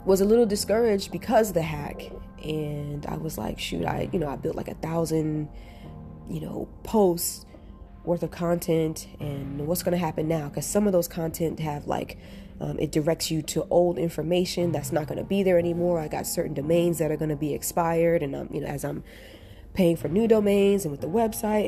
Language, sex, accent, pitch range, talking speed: English, female, American, 150-180 Hz, 215 wpm